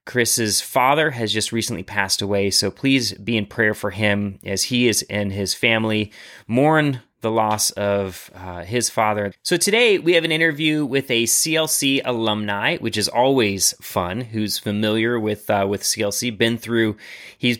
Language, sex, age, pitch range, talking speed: English, male, 30-49, 105-125 Hz, 170 wpm